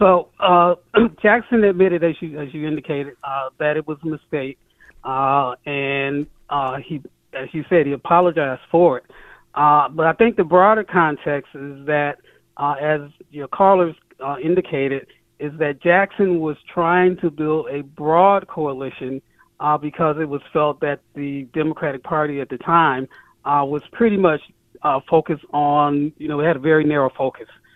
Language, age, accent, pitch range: English, 40-59, American, 140-165 Hz